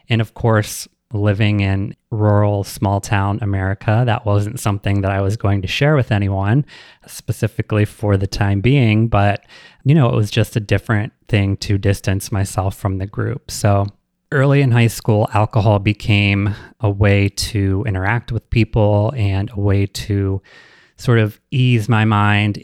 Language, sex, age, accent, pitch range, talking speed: English, male, 20-39, American, 100-110 Hz, 165 wpm